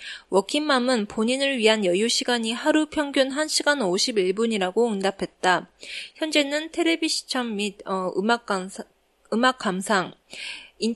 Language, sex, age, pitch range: Japanese, female, 20-39, 205-275 Hz